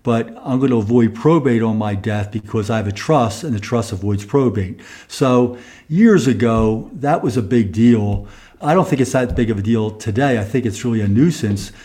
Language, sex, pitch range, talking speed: English, male, 110-130 Hz, 215 wpm